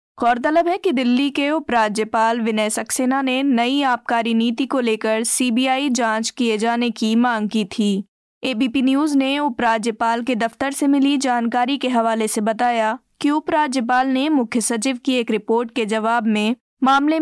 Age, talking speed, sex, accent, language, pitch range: 20-39, 165 wpm, female, native, Hindi, 225-270 Hz